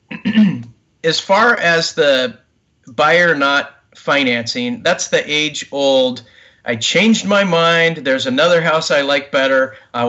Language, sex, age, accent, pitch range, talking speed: English, male, 40-59, American, 135-190 Hz, 130 wpm